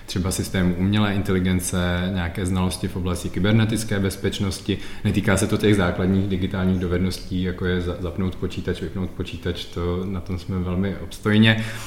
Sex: male